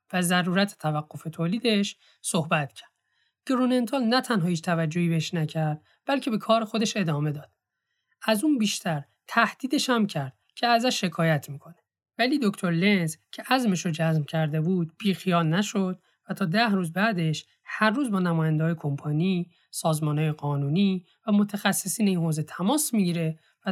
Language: Persian